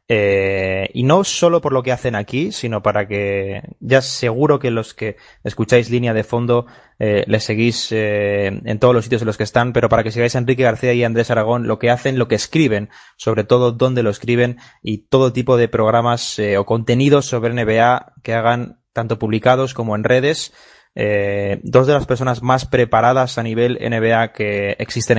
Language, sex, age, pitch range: Spanish, male, 20-39, 110-125 Hz